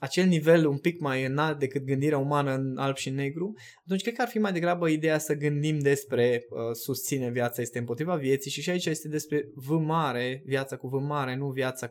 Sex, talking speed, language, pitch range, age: male, 215 wpm, Romanian, 130-165 Hz, 20-39